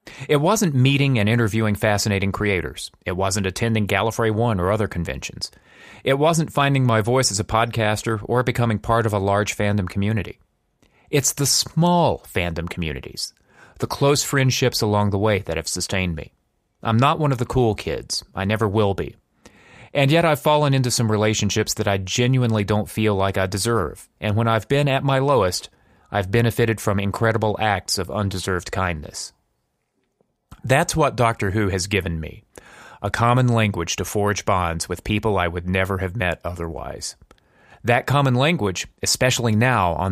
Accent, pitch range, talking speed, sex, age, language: American, 95-125 Hz, 170 wpm, male, 30-49, English